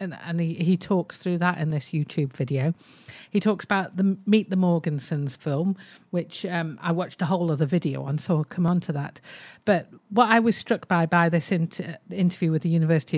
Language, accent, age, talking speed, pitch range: English, British, 50-69, 210 wpm, 155-190 Hz